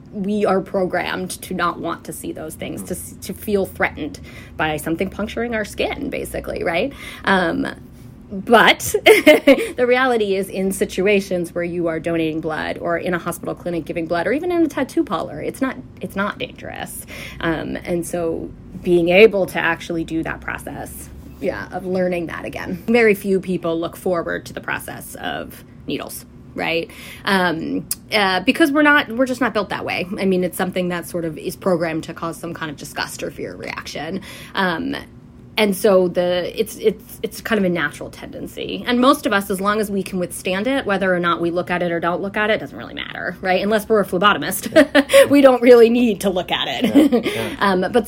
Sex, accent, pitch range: female, American, 175-225 Hz